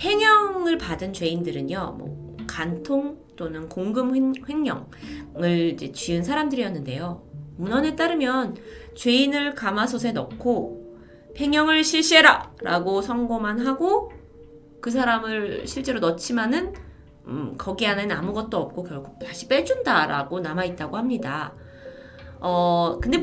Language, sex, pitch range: Korean, female, 170-275 Hz